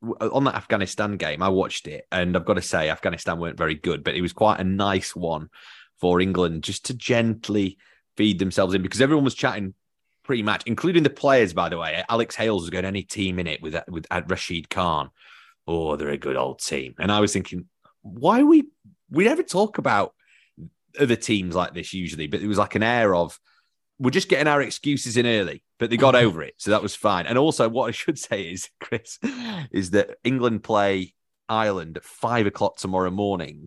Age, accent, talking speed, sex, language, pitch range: 30-49, British, 210 wpm, male, English, 90-120 Hz